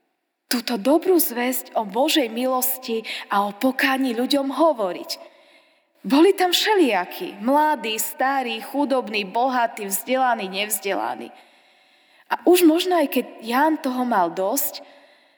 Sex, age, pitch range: female, 20-39, 245-325 Hz